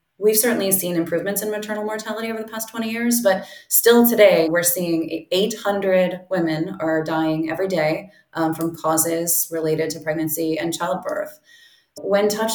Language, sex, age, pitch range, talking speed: English, female, 20-39, 160-190 Hz, 160 wpm